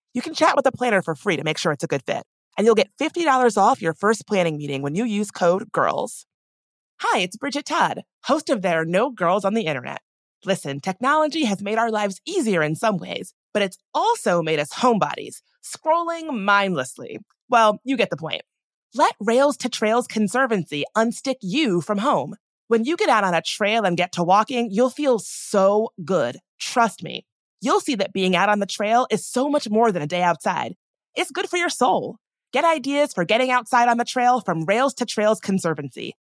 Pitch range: 185-265 Hz